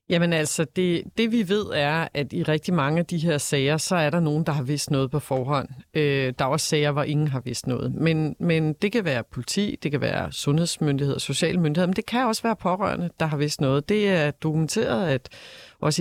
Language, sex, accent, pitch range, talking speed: Danish, female, native, 145-180 Hz, 230 wpm